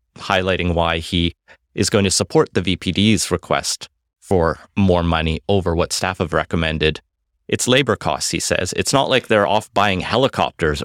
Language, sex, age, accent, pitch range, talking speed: English, male, 30-49, American, 80-100 Hz, 165 wpm